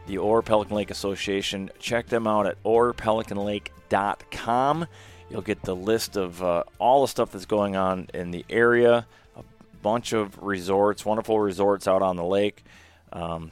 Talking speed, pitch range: 160 wpm, 95-120 Hz